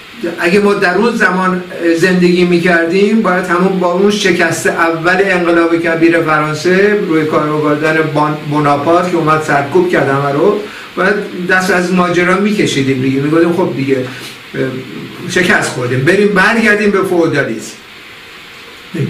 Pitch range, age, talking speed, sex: 140-185 Hz, 50-69, 135 wpm, male